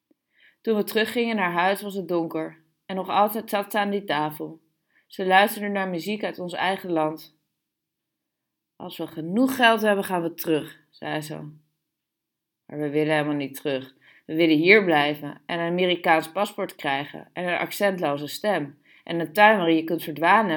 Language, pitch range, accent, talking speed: Dutch, 155-205 Hz, Dutch, 175 wpm